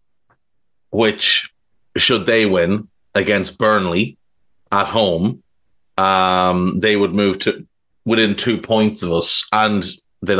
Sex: male